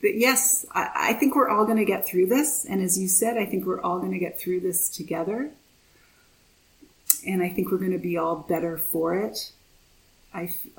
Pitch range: 180-215 Hz